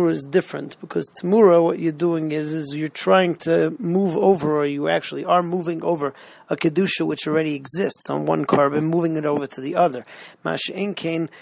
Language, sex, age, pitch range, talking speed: English, male, 40-59, 155-180 Hz, 190 wpm